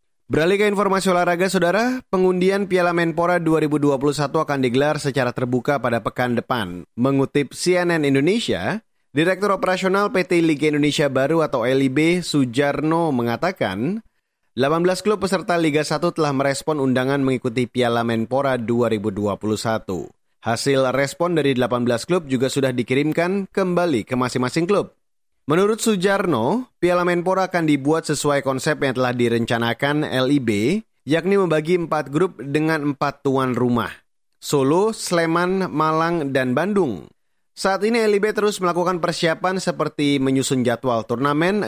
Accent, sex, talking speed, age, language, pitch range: native, male, 125 wpm, 30-49, Indonesian, 130-180 Hz